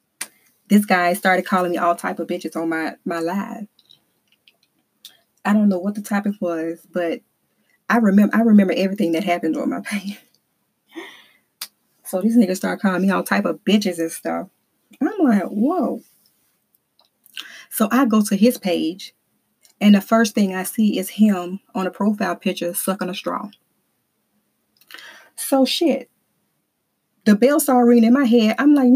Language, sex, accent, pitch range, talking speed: English, female, American, 185-245 Hz, 160 wpm